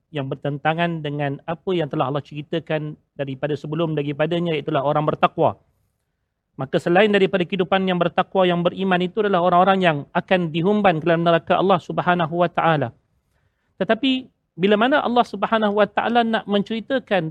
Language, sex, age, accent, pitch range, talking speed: Malayalam, male, 40-59, Indonesian, 170-225 Hz, 145 wpm